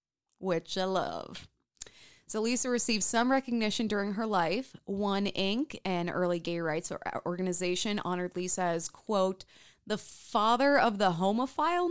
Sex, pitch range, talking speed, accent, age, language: female, 180-250 Hz, 135 wpm, American, 20-39, English